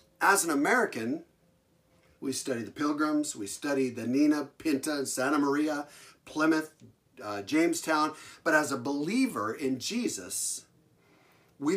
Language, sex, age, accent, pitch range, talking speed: English, male, 50-69, American, 130-195 Hz, 120 wpm